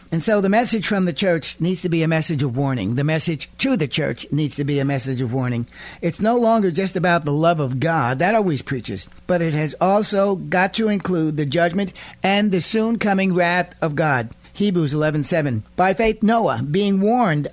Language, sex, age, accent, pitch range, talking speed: English, male, 60-79, American, 150-195 Hz, 210 wpm